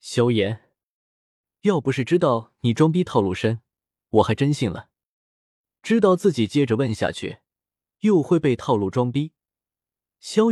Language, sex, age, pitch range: Chinese, male, 20-39, 110-160 Hz